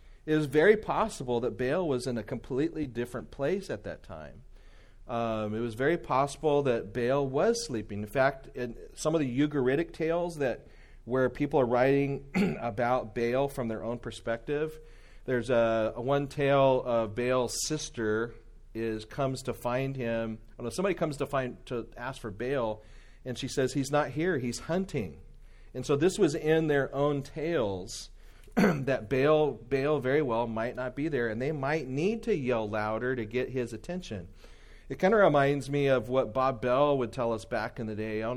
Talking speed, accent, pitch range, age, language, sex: 190 wpm, American, 115-145 Hz, 40-59, English, male